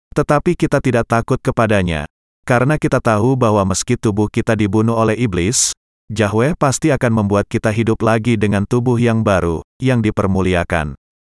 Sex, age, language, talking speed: male, 30-49, Indonesian, 150 wpm